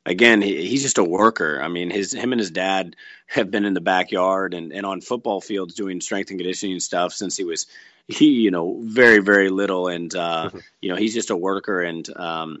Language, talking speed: English, 215 wpm